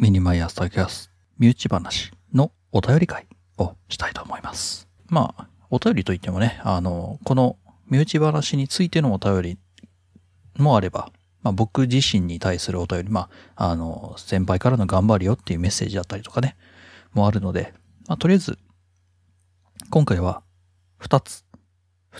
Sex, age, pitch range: male, 40-59, 90-120 Hz